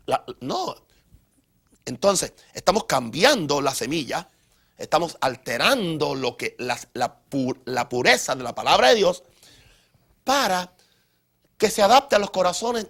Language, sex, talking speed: Spanish, male, 130 wpm